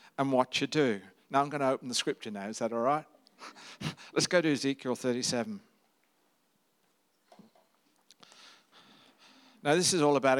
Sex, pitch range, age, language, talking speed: male, 130-165 Hz, 60-79, English, 150 wpm